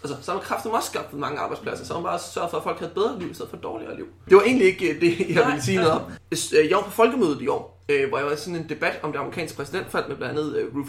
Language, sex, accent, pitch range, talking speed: Danish, male, native, 140-215 Hz, 305 wpm